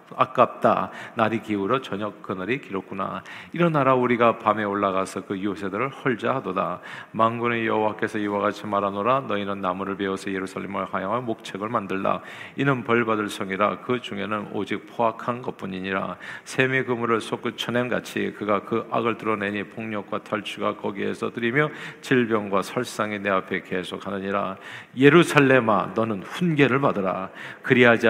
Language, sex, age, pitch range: Korean, male, 40-59, 100-125 Hz